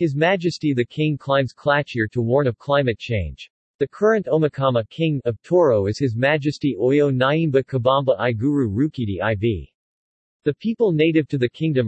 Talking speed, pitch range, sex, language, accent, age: 160 wpm, 120-150 Hz, male, English, American, 50-69